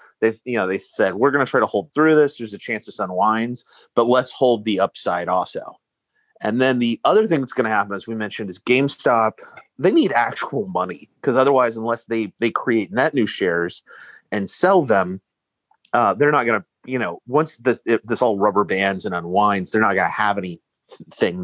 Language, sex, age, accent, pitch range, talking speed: English, male, 30-49, American, 110-130 Hz, 215 wpm